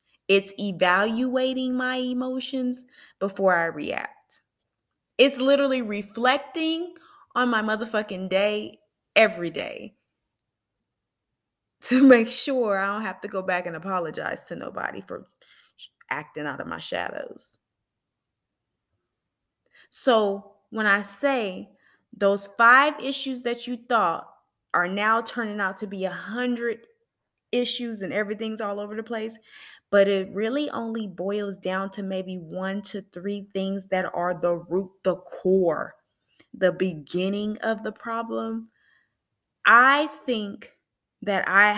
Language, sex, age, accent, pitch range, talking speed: English, female, 20-39, American, 185-235 Hz, 125 wpm